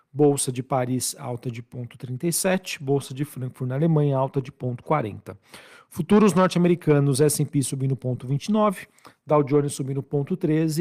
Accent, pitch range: Brazilian, 130-155 Hz